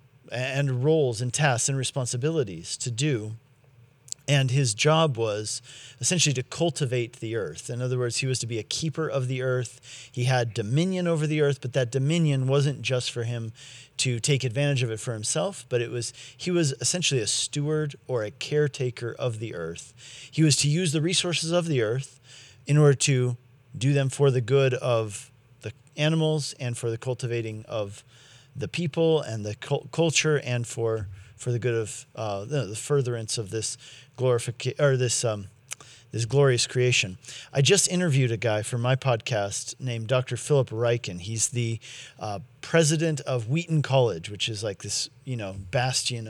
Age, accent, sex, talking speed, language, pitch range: 40-59, American, male, 180 wpm, English, 120-140 Hz